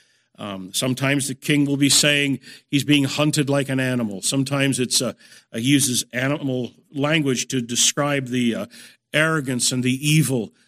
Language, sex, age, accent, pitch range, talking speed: English, male, 50-69, American, 125-170 Hz, 145 wpm